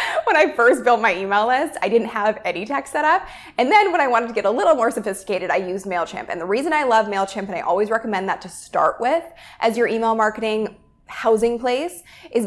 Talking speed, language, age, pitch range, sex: 235 wpm, English, 20-39, 195-240 Hz, female